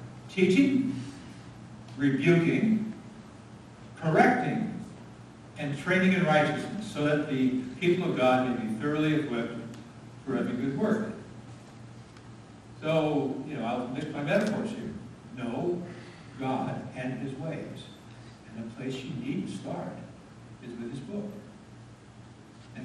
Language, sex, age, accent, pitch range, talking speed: English, male, 60-79, American, 115-155 Hz, 120 wpm